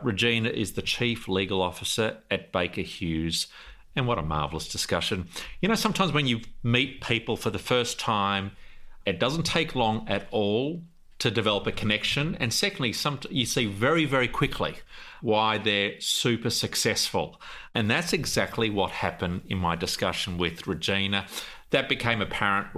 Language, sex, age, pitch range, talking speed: English, male, 40-59, 100-120 Hz, 155 wpm